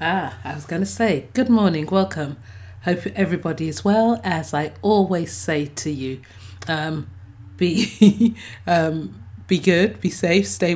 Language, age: English, 30-49